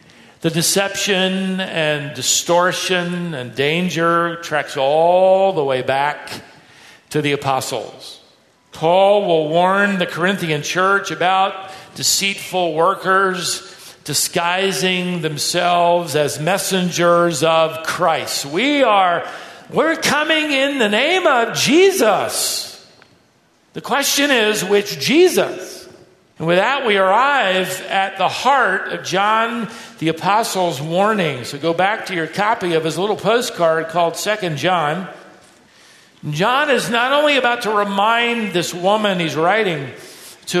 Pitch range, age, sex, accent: 170-220 Hz, 50-69, male, American